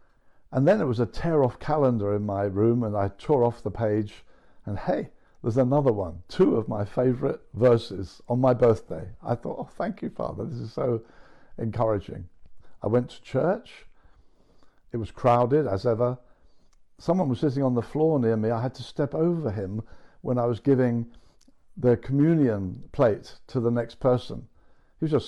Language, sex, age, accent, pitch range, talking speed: English, male, 60-79, British, 110-135 Hz, 180 wpm